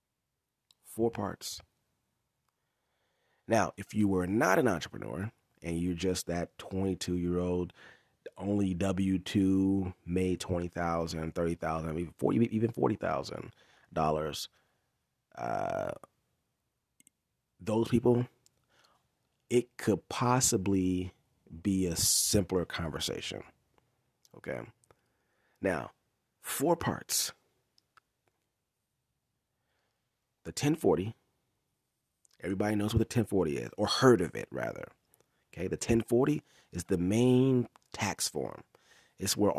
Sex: male